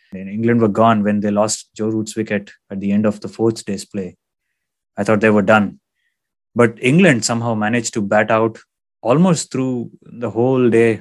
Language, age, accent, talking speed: English, 20-39, Indian, 185 wpm